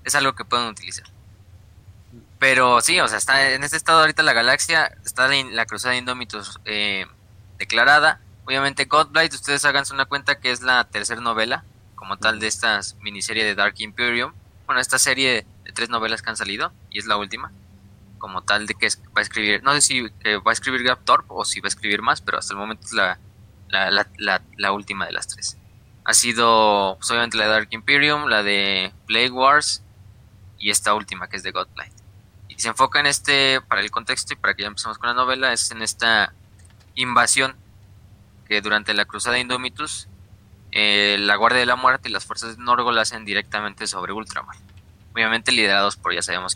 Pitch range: 100-120 Hz